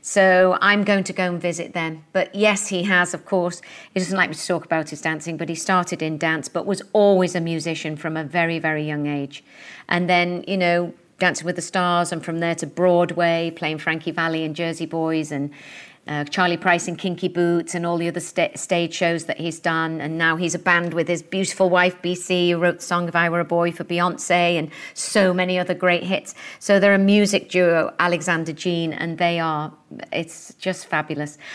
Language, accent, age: English, British, 40-59